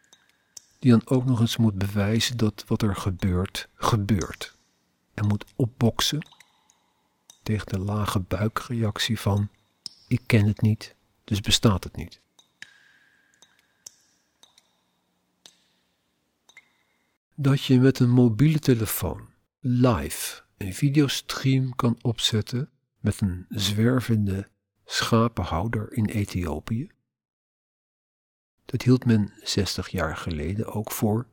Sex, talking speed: male, 100 wpm